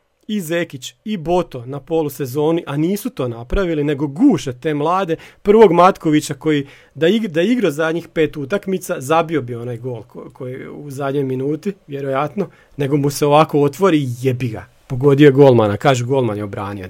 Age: 40-59